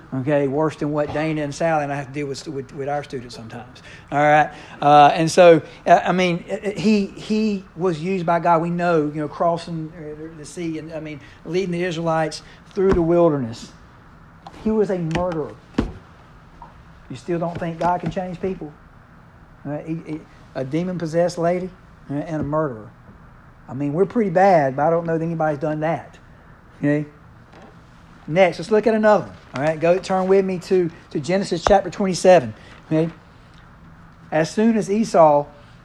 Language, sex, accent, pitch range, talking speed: English, male, American, 155-195 Hz, 175 wpm